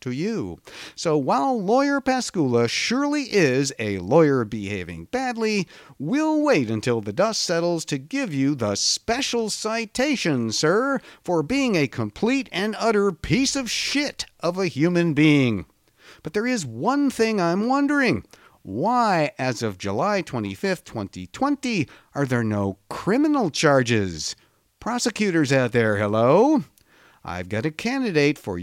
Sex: male